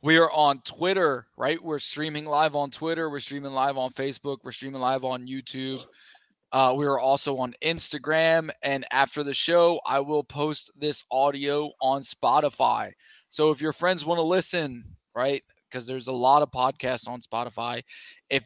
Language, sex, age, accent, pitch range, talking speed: English, male, 20-39, American, 130-155 Hz, 175 wpm